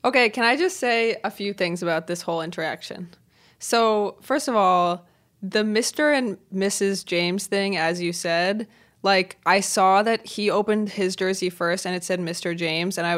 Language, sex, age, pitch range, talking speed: English, female, 20-39, 180-235 Hz, 185 wpm